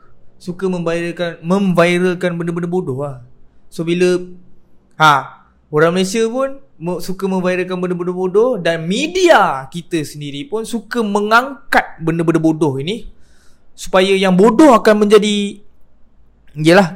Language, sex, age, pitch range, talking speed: Malay, male, 20-39, 140-195 Hz, 115 wpm